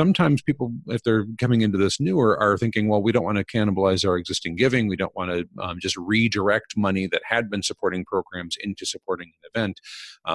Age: 40-59